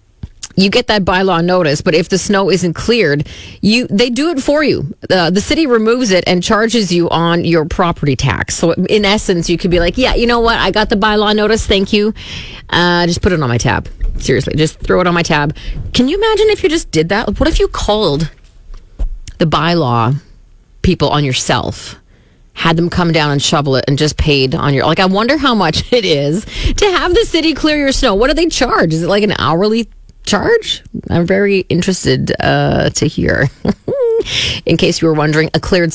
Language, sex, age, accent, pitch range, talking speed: English, female, 30-49, American, 155-230 Hz, 210 wpm